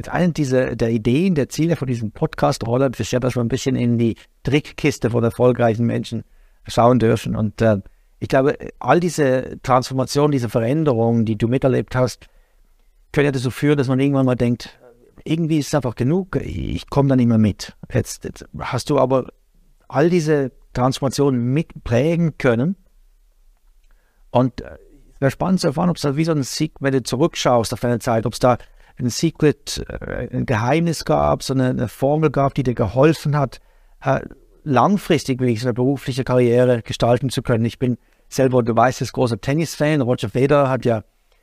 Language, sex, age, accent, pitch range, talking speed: English, male, 60-79, German, 120-150 Hz, 175 wpm